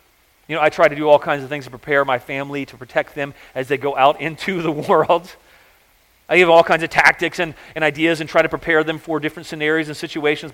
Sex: male